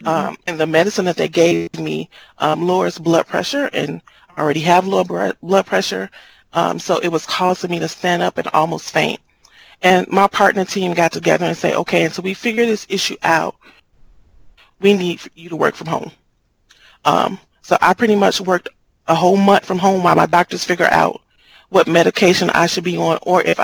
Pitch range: 165-190 Hz